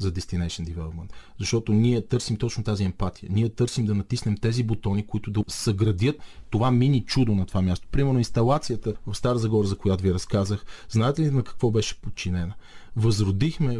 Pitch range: 95-115 Hz